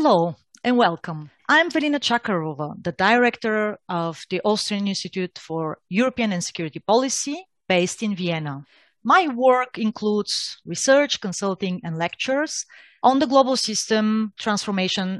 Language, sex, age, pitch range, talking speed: English, female, 30-49, 185-240 Hz, 125 wpm